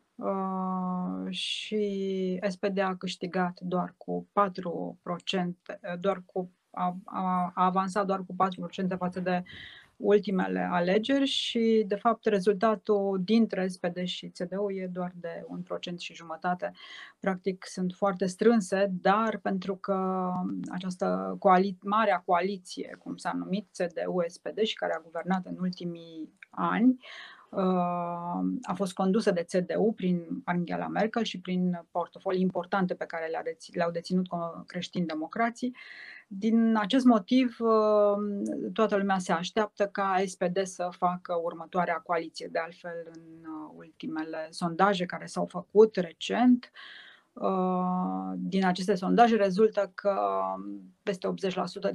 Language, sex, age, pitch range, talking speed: Romanian, female, 30-49, 175-200 Hz, 115 wpm